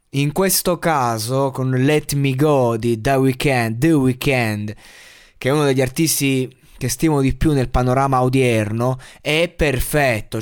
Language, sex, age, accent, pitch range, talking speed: Italian, male, 20-39, native, 130-165 Hz, 145 wpm